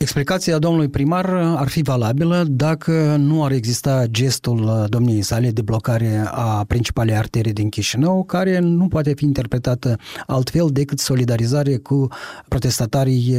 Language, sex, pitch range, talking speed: Romanian, male, 125-150 Hz, 135 wpm